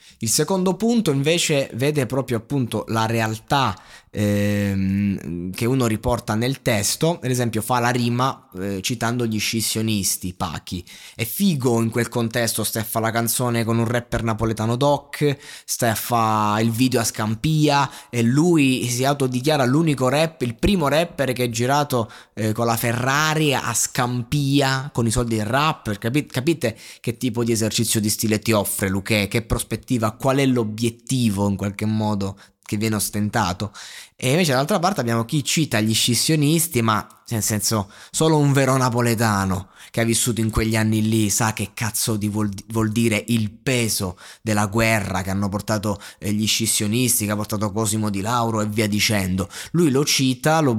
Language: Italian